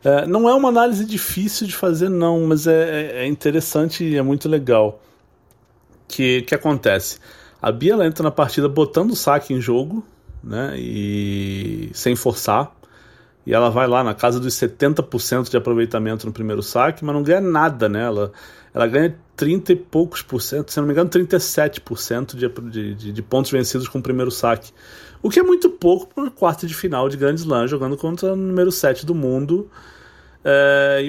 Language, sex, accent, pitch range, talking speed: Portuguese, male, Brazilian, 120-170 Hz, 185 wpm